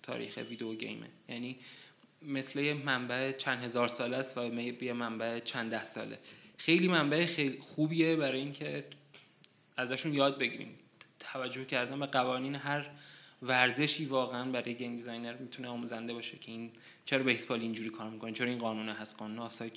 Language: Persian